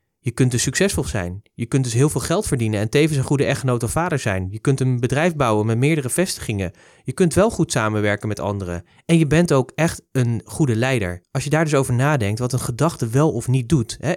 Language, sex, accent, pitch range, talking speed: Dutch, male, Dutch, 115-165 Hz, 240 wpm